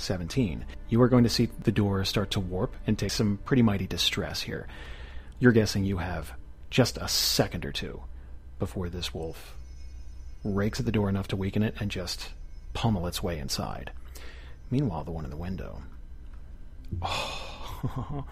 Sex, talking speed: male, 165 wpm